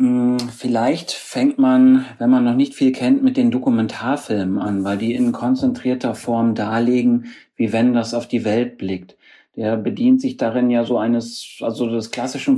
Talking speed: 170 wpm